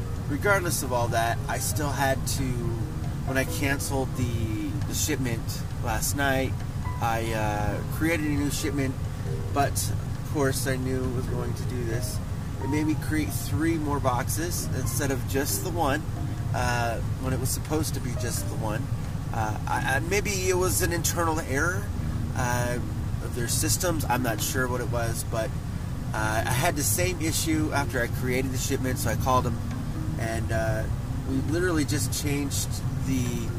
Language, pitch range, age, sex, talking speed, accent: English, 110-130 Hz, 20-39, male, 175 wpm, American